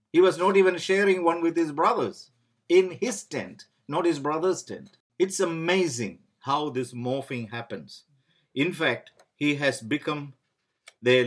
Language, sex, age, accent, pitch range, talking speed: English, male, 50-69, Indian, 120-160 Hz, 150 wpm